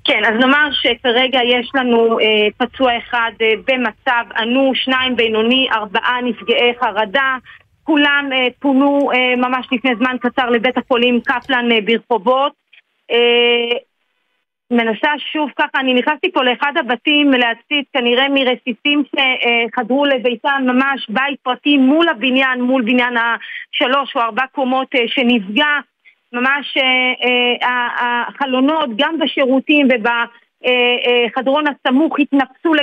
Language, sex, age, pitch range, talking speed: Hebrew, female, 40-59, 245-290 Hz, 120 wpm